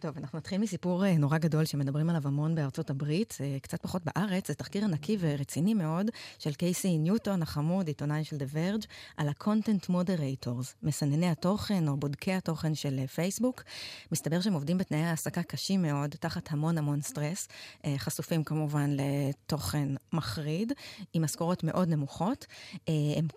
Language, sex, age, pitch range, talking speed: Hebrew, female, 20-39, 145-175 Hz, 145 wpm